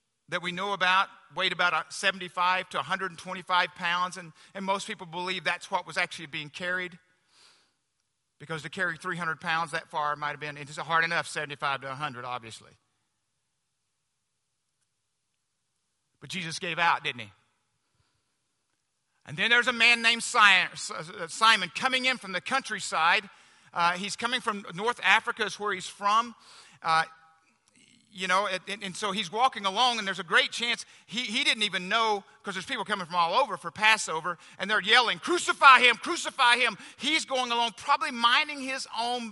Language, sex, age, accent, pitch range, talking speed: English, male, 50-69, American, 160-230 Hz, 160 wpm